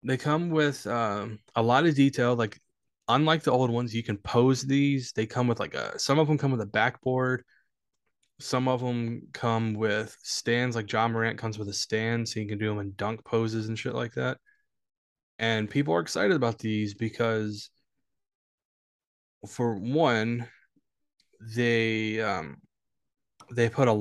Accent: American